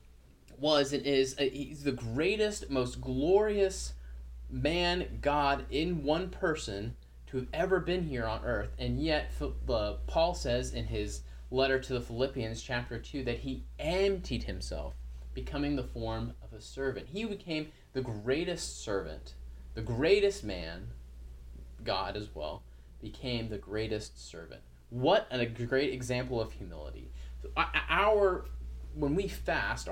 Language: English